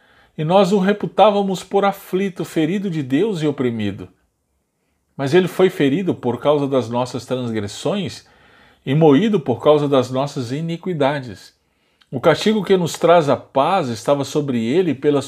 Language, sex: Portuguese, male